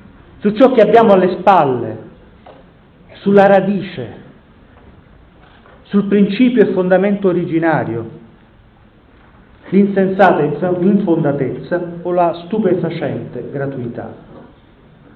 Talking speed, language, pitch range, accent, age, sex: 75 wpm, Italian, 140-195 Hz, native, 40-59, male